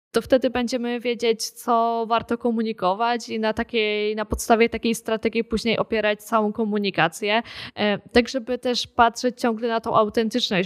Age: 10-29